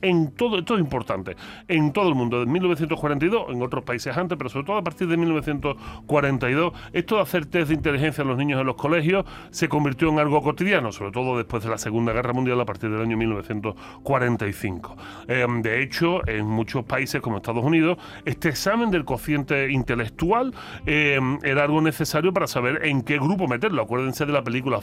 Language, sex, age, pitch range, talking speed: Spanish, female, 30-49, 125-175 Hz, 195 wpm